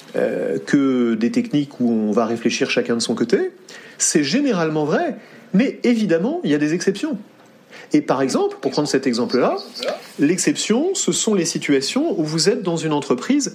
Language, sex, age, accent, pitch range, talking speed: French, male, 30-49, French, 140-215 Hz, 175 wpm